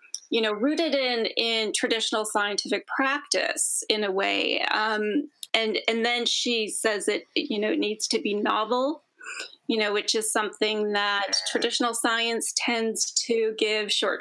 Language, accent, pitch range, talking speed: English, American, 215-255 Hz, 155 wpm